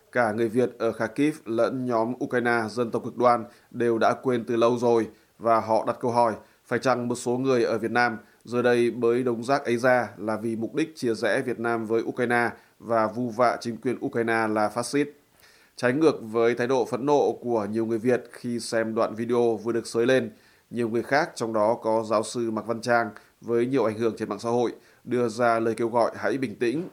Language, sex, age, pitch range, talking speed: Vietnamese, male, 20-39, 115-125 Hz, 230 wpm